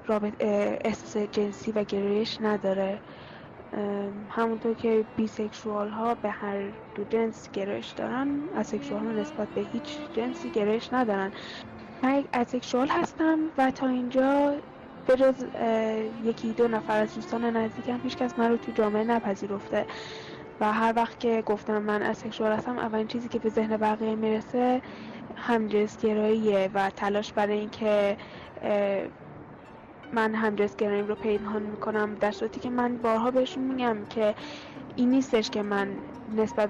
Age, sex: 10-29, female